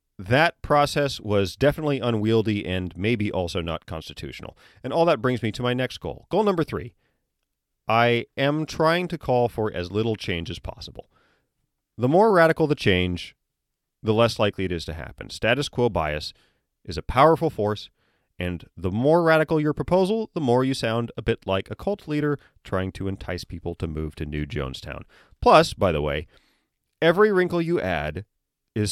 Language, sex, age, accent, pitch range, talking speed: English, male, 40-59, American, 90-140 Hz, 180 wpm